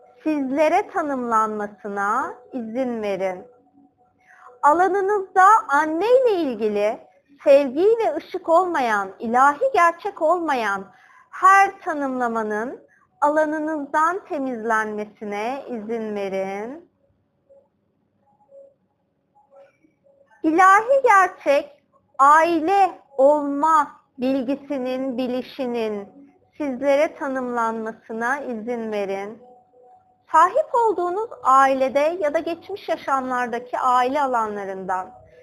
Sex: female